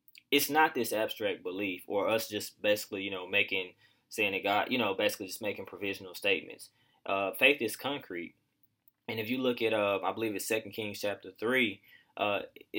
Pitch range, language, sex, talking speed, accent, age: 100-125 Hz, English, male, 190 wpm, American, 10-29